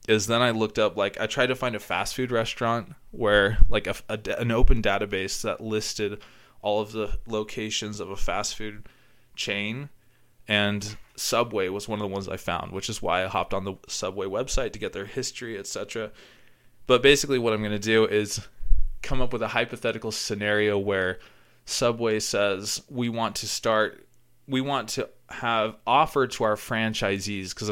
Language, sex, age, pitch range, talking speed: English, male, 20-39, 105-120 Hz, 180 wpm